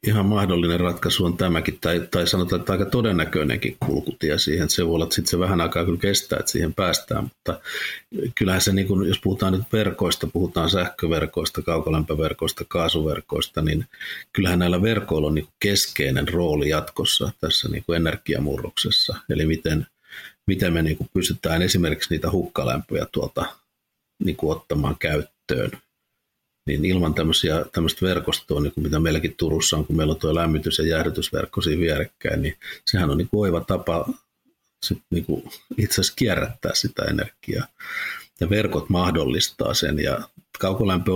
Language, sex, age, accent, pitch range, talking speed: English, male, 50-69, Finnish, 80-95 Hz, 145 wpm